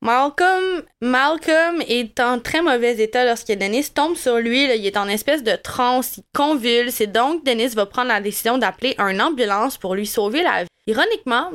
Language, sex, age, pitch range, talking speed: French, female, 20-39, 220-265 Hz, 190 wpm